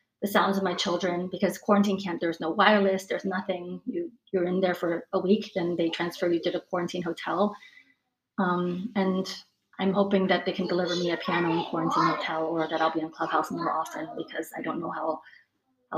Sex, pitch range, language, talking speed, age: female, 170-200 Hz, English, 205 wpm, 30-49